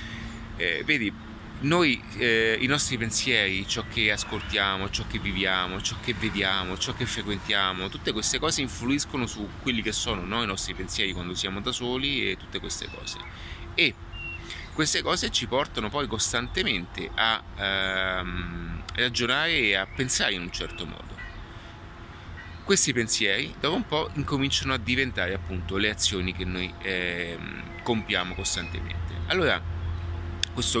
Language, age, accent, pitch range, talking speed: Italian, 30-49, native, 85-115 Hz, 145 wpm